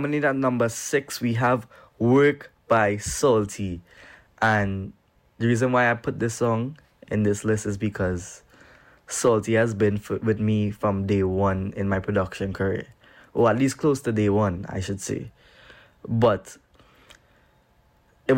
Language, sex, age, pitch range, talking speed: English, male, 20-39, 100-115 Hz, 155 wpm